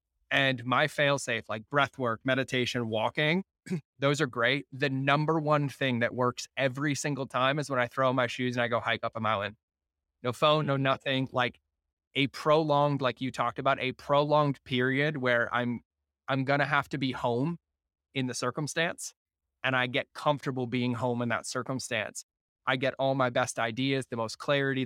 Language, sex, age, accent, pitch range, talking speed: English, male, 20-39, American, 110-135 Hz, 190 wpm